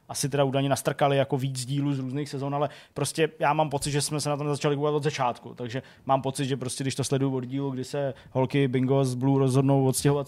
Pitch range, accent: 125-145 Hz, native